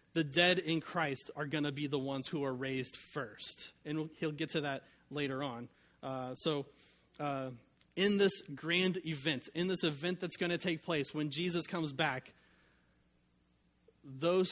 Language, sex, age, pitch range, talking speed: English, male, 30-49, 140-175 Hz, 170 wpm